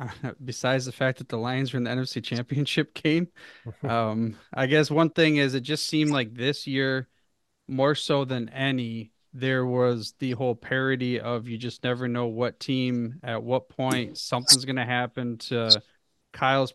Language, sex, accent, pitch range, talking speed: English, male, American, 115-130 Hz, 175 wpm